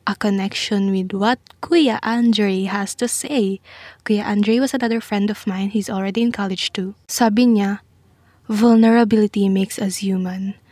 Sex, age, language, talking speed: female, 20-39, English, 150 wpm